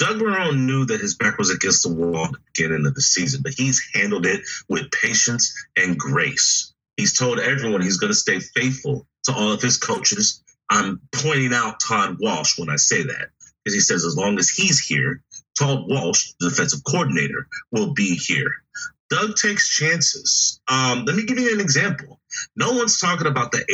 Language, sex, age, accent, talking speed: English, male, 30-49, American, 195 wpm